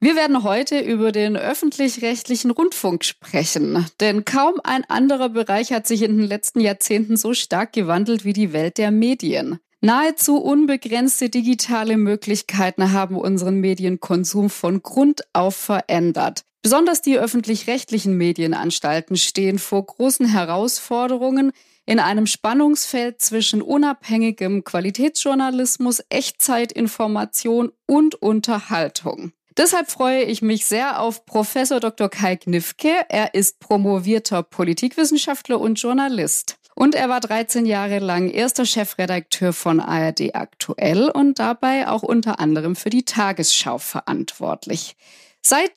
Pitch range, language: 195-260 Hz, German